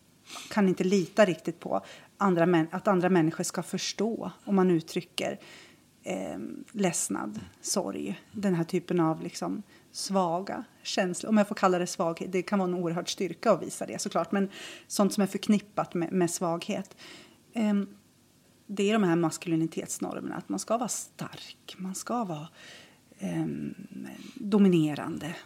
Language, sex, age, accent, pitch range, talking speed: Swedish, female, 30-49, native, 175-205 Hz, 155 wpm